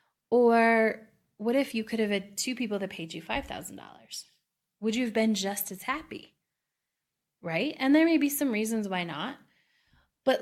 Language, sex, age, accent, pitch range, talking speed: English, female, 10-29, American, 185-255 Hz, 175 wpm